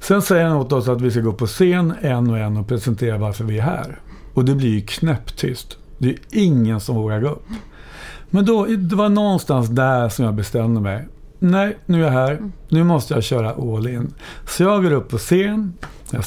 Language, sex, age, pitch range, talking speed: English, male, 50-69, 120-165 Hz, 215 wpm